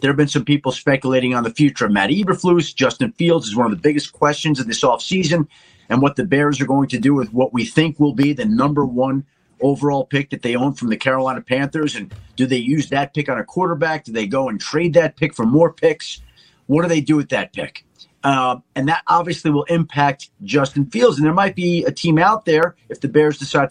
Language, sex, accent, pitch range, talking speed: English, male, American, 135-170 Hz, 240 wpm